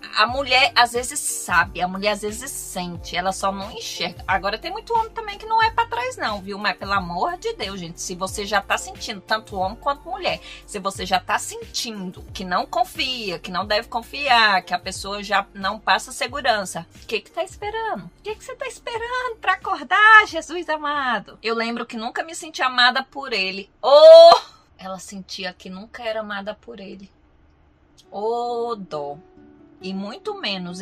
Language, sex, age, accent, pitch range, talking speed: Portuguese, female, 20-39, Brazilian, 190-275 Hz, 190 wpm